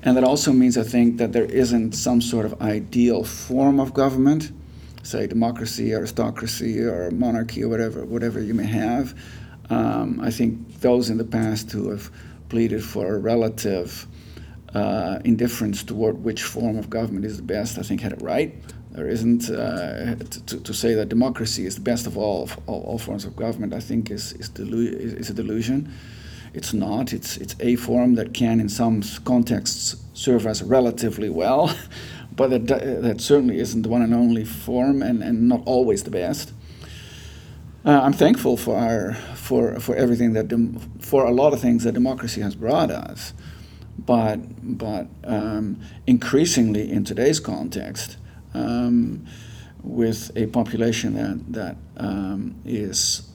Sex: male